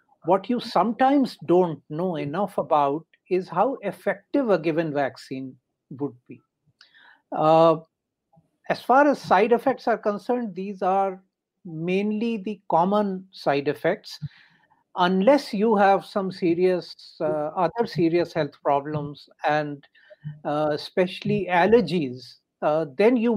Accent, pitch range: Indian, 150-195 Hz